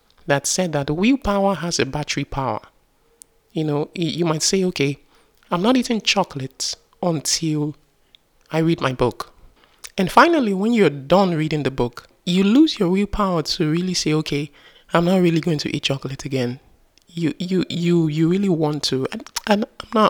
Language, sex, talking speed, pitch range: English, male, 175 wpm, 145-185 Hz